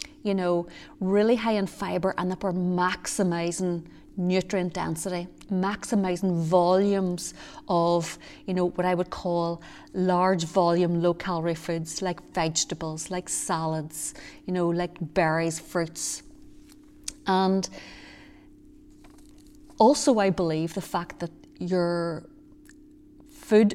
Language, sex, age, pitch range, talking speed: English, female, 30-49, 175-275 Hz, 110 wpm